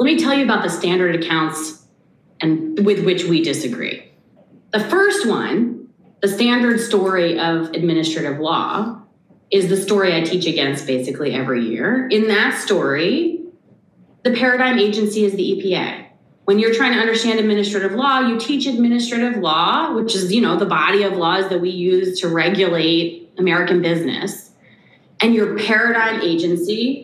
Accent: American